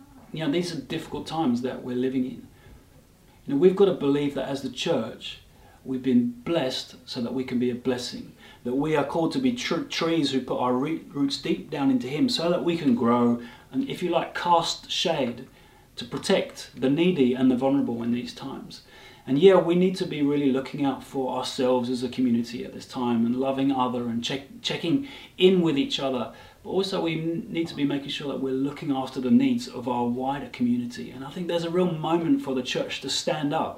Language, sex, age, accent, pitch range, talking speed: English, male, 30-49, British, 125-165 Hz, 220 wpm